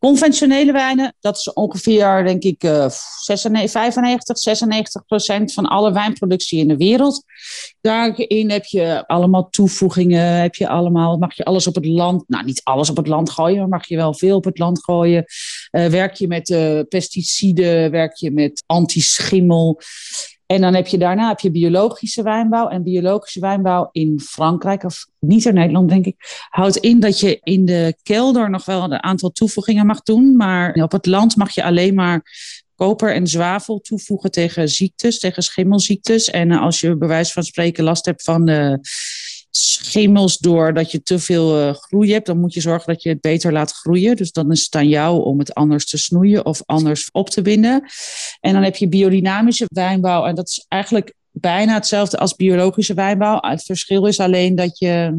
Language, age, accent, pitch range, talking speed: Dutch, 40-59, Dutch, 170-210 Hz, 185 wpm